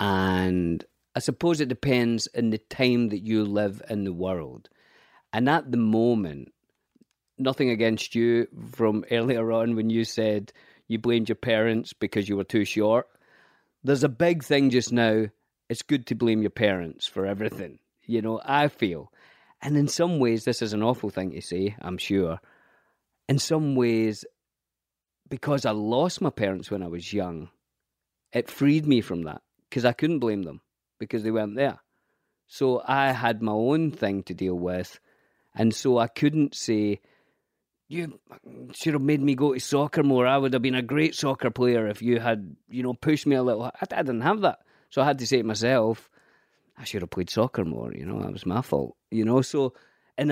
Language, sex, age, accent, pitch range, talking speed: English, male, 40-59, British, 105-135 Hz, 190 wpm